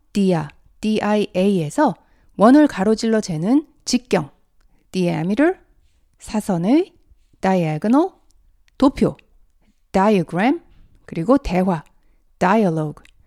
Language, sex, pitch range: Korean, female, 165-255 Hz